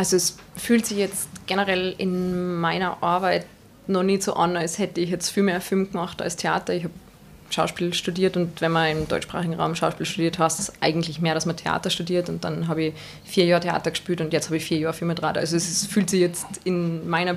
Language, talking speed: German, 230 wpm